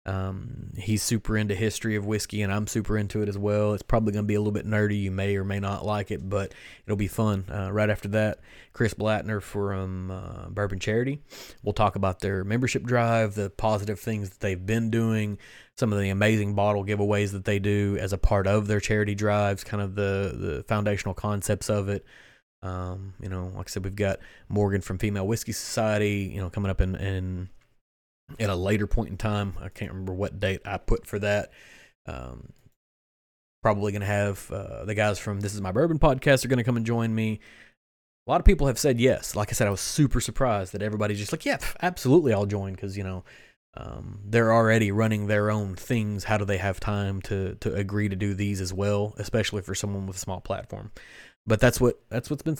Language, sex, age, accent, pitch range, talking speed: English, male, 20-39, American, 100-110 Hz, 220 wpm